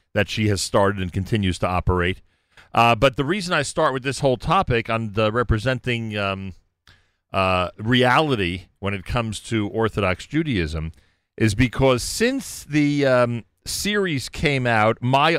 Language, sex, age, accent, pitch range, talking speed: English, male, 40-59, American, 95-135 Hz, 150 wpm